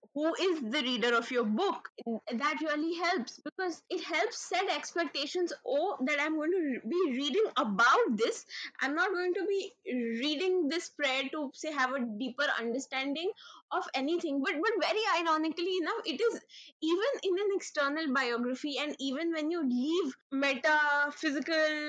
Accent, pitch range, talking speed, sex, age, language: Indian, 270-365 Hz, 160 wpm, female, 20-39, English